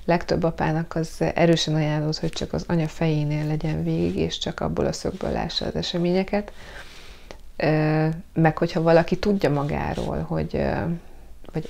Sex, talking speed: female, 140 wpm